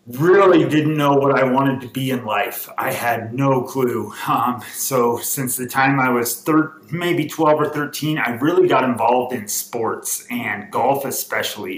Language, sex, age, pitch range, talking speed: English, male, 30-49, 120-150 Hz, 175 wpm